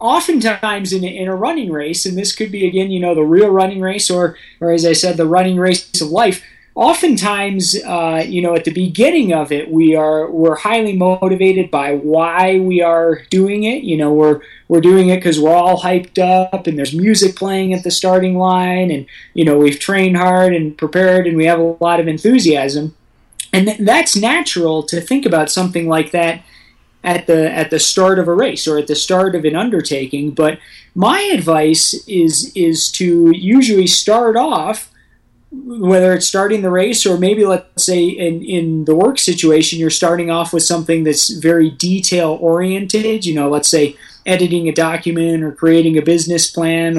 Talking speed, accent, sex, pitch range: 190 wpm, American, male, 160-190 Hz